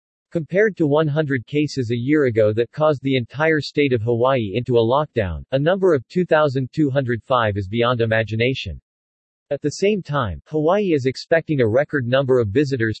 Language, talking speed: English, 165 wpm